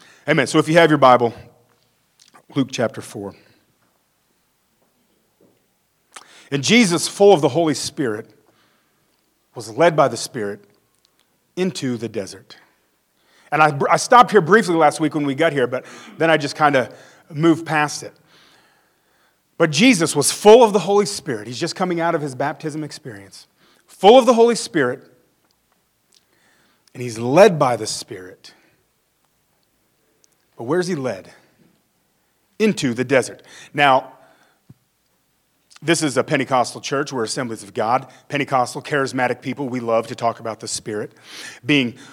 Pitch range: 130-180 Hz